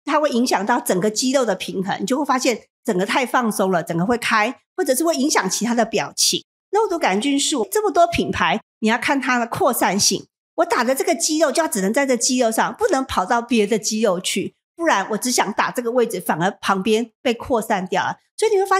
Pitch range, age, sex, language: 190-280 Hz, 50-69, female, Chinese